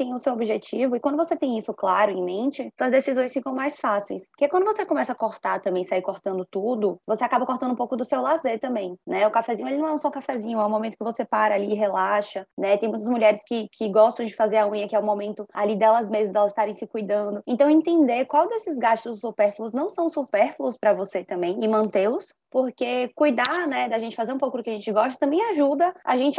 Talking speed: 245 wpm